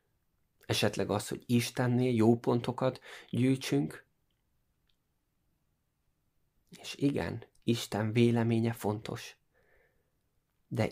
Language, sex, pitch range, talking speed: Hungarian, male, 100-125 Hz, 70 wpm